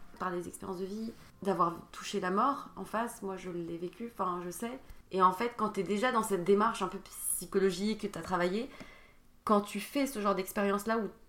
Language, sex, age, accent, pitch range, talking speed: French, female, 20-39, French, 195-235 Hz, 220 wpm